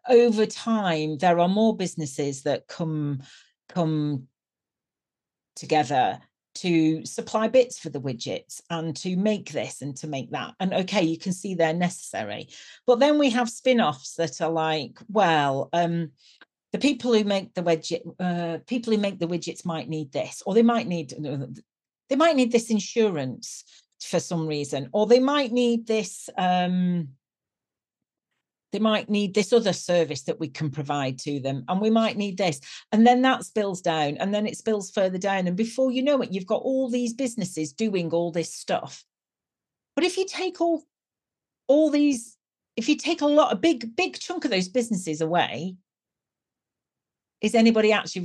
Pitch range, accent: 160-230 Hz, British